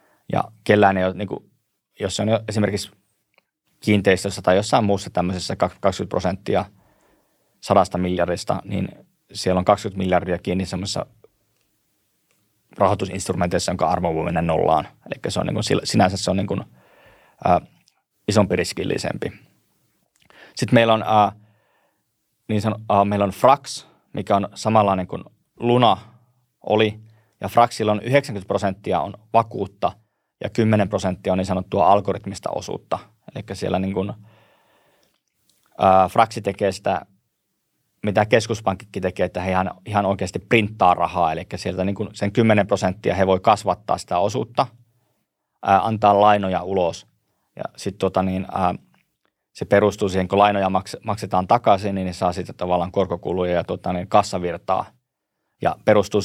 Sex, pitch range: male, 95-105 Hz